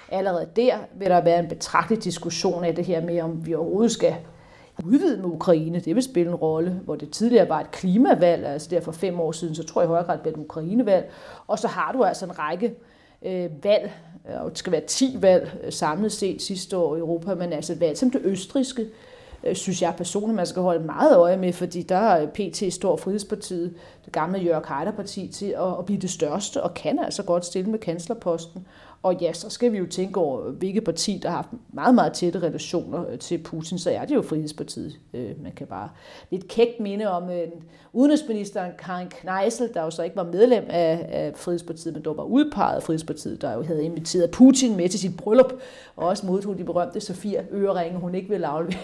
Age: 40-59